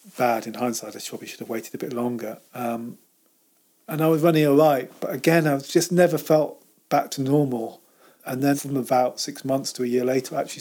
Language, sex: English, male